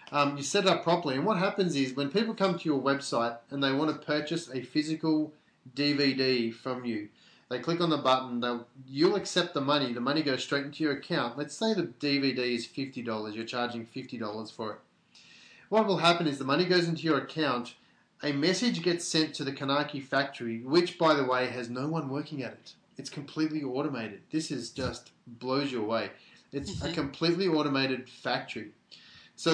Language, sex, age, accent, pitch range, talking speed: English, male, 30-49, Australian, 125-155 Hz, 195 wpm